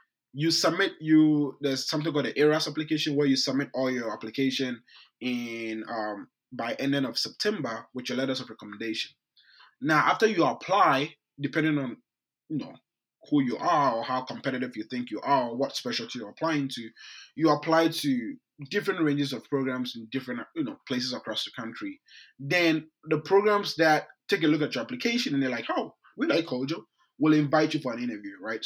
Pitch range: 125-160 Hz